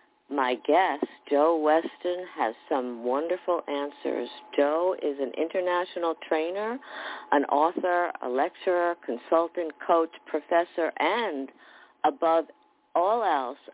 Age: 50-69